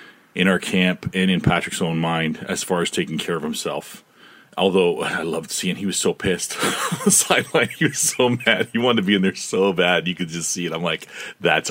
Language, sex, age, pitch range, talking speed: English, male, 40-59, 90-125 Hz, 220 wpm